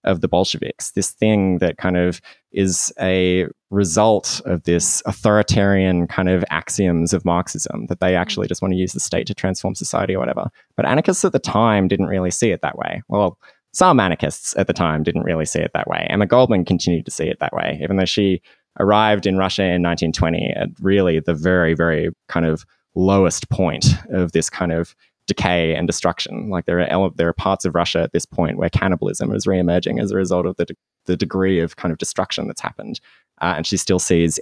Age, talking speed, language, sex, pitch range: 20-39, 210 wpm, English, male, 85-95 Hz